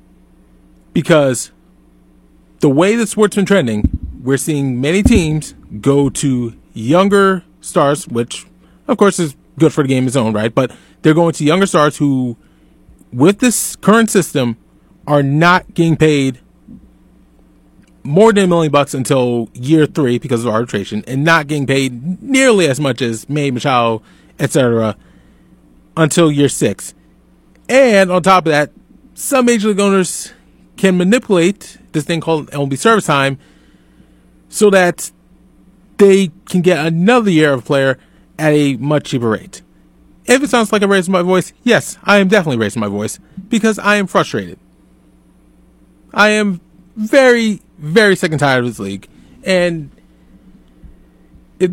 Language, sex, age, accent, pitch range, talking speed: English, male, 30-49, American, 115-195 Hz, 150 wpm